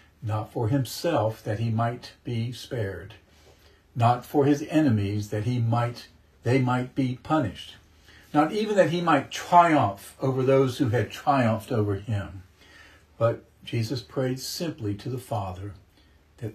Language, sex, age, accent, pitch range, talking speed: English, male, 60-79, American, 95-135 Hz, 145 wpm